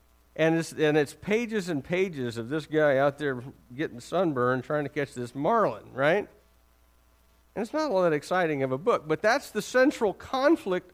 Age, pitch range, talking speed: 50-69, 150-215 Hz, 185 wpm